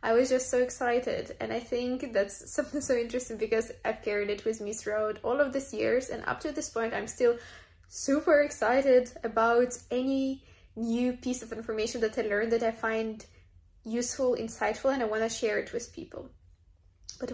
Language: English